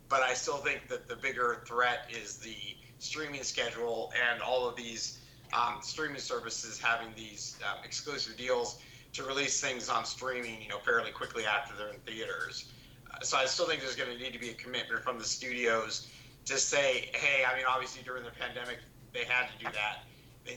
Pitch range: 115-130 Hz